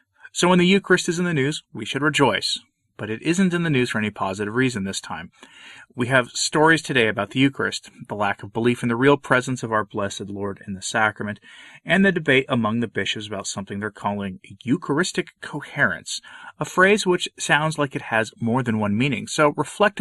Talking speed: 210 wpm